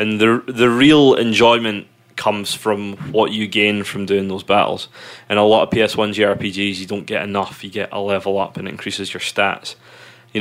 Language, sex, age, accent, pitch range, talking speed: English, male, 20-39, British, 100-120 Hz, 200 wpm